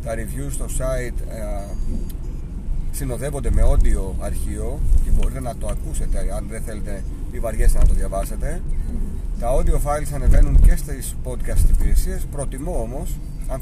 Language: Greek